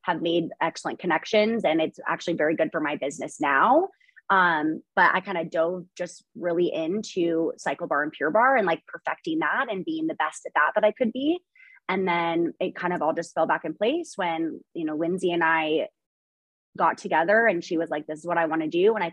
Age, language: 20-39, English